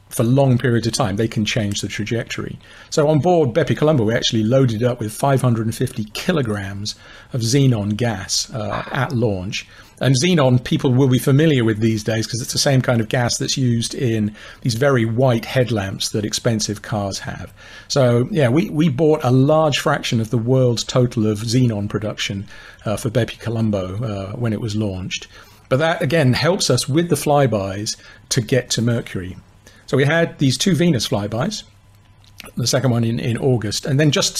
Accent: British